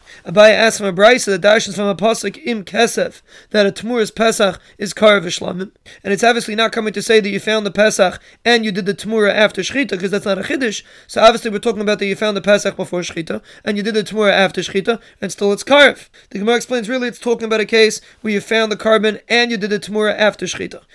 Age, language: 20-39, English